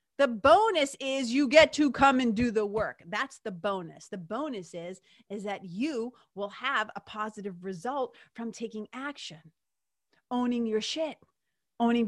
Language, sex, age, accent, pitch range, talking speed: English, female, 30-49, American, 210-300 Hz, 160 wpm